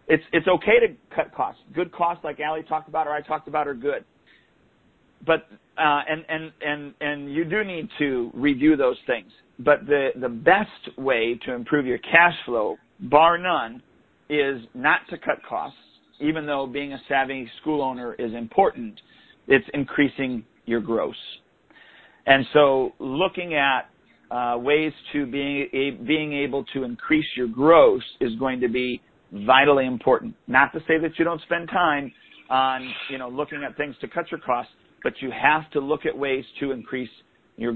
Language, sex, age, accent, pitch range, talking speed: English, male, 50-69, American, 130-160 Hz, 175 wpm